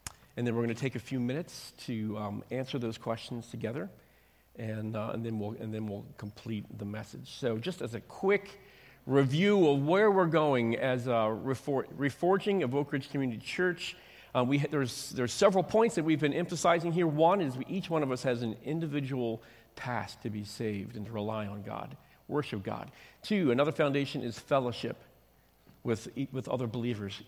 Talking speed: 190 wpm